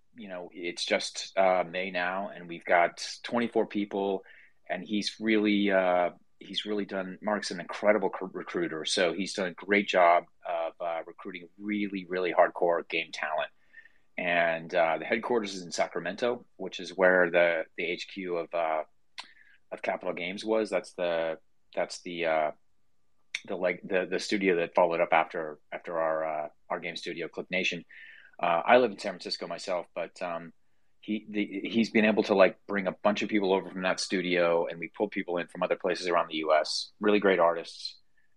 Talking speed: 185 wpm